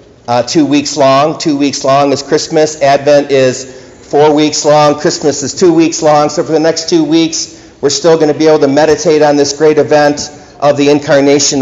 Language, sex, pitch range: English, male, 140-160 Hz